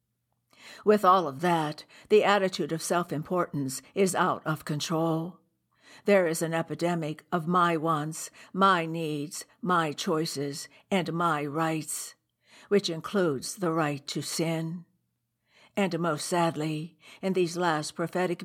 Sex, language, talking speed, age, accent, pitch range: female, English, 125 wpm, 60-79, American, 155-185 Hz